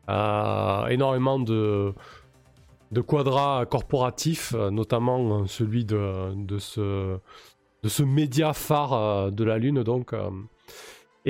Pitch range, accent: 105-130 Hz, French